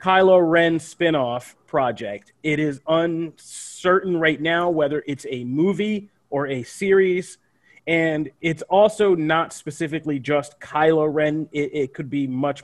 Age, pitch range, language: 30-49, 135-160 Hz, English